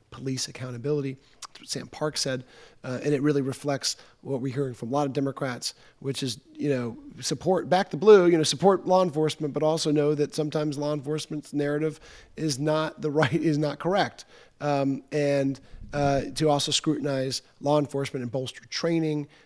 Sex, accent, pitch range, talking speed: male, American, 130-150 Hz, 180 wpm